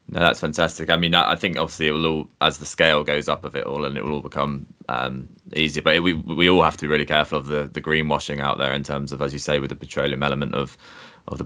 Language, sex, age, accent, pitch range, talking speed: English, male, 20-39, British, 75-85 Hz, 290 wpm